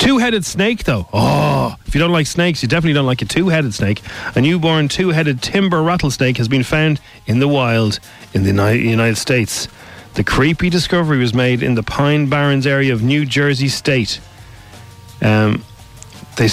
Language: English